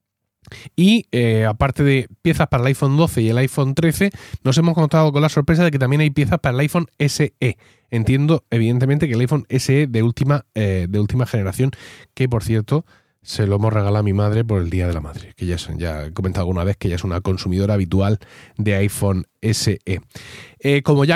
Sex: male